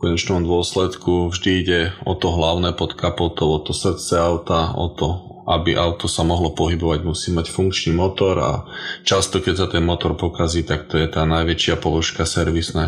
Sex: male